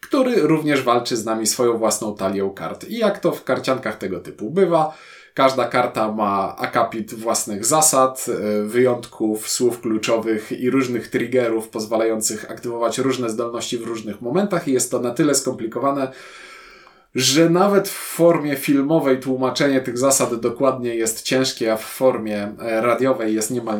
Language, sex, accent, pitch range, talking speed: Polish, male, native, 115-155 Hz, 150 wpm